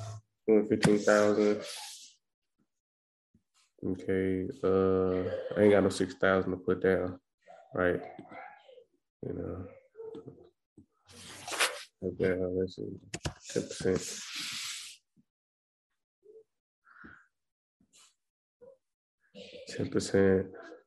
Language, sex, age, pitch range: English, male, 20-39, 95-110 Hz